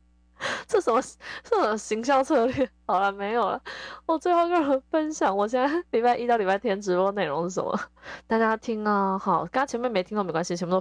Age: 20-39